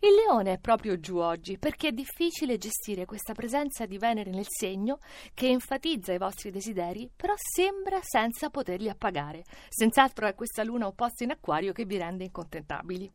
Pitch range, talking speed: 190-255 Hz, 170 wpm